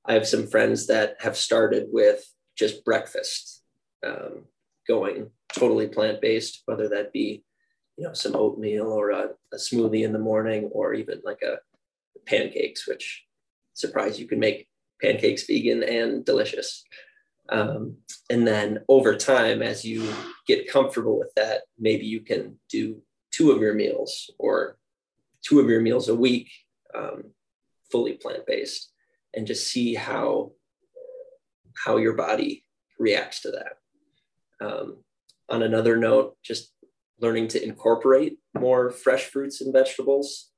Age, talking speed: 20-39, 140 wpm